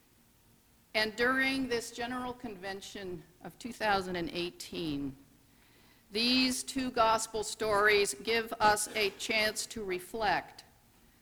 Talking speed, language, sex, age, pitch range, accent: 90 wpm, English, female, 50-69, 180-230 Hz, American